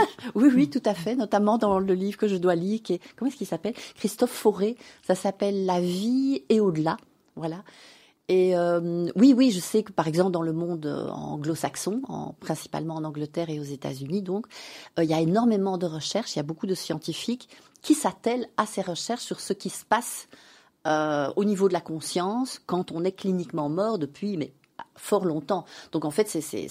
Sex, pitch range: female, 160-215 Hz